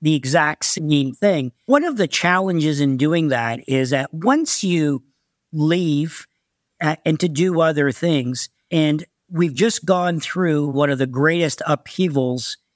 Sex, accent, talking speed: male, American, 150 wpm